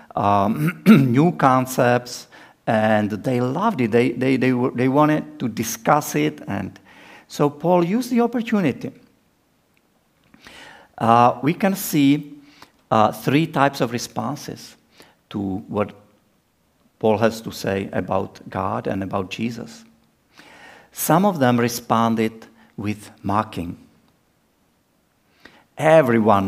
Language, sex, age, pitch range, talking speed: English, male, 50-69, 105-145 Hz, 110 wpm